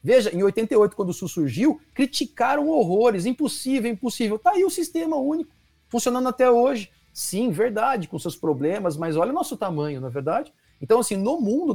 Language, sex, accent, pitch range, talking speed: Portuguese, male, Brazilian, 160-235 Hz, 185 wpm